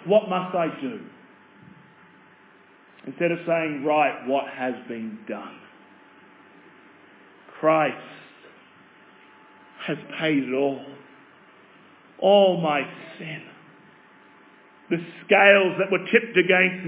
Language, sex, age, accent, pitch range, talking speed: English, male, 40-59, Australian, 150-180 Hz, 90 wpm